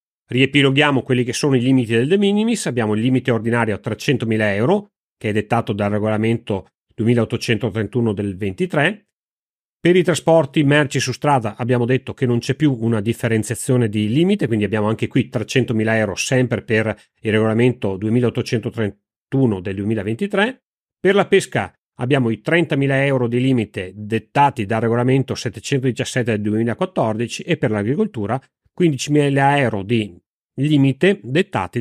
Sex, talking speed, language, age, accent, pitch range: male, 145 wpm, Italian, 40-59, native, 110-140 Hz